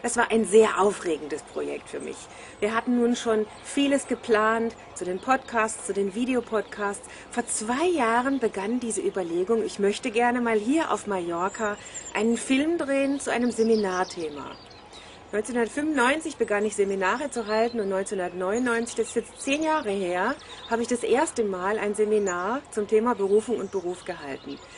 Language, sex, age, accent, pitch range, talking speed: German, female, 30-49, German, 205-255 Hz, 160 wpm